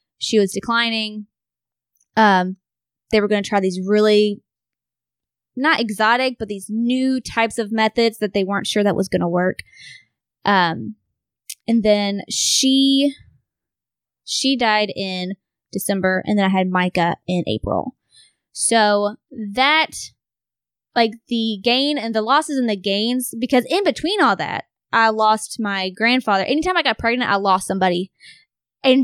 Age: 20-39